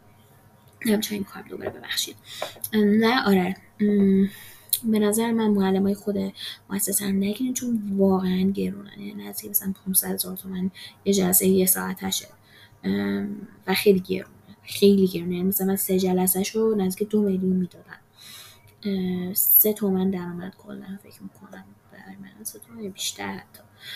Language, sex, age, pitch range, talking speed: Persian, female, 20-39, 180-205 Hz, 135 wpm